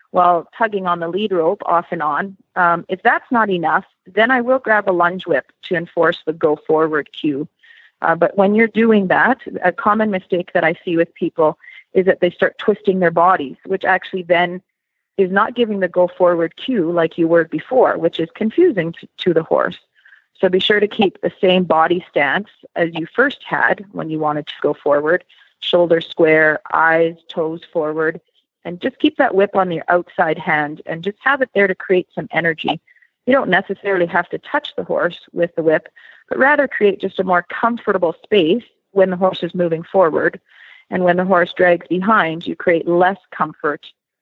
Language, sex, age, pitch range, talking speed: English, female, 30-49, 165-200 Hz, 195 wpm